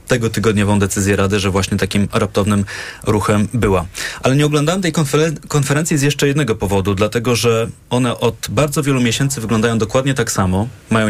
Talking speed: 170 wpm